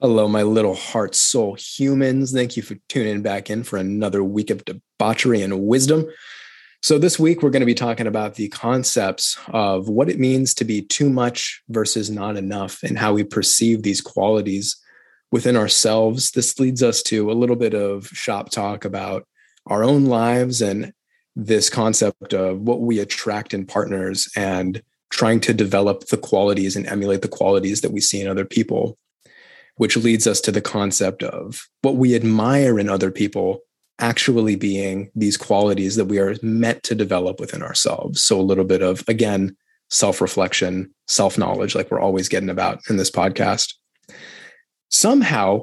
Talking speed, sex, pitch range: 170 wpm, male, 100-120 Hz